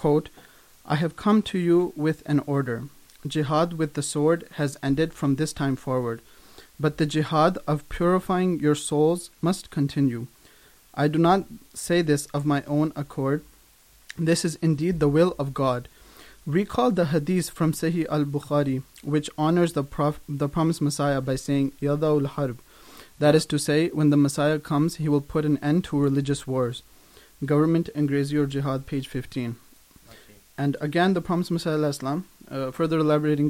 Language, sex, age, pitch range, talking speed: Urdu, male, 30-49, 140-160 Hz, 160 wpm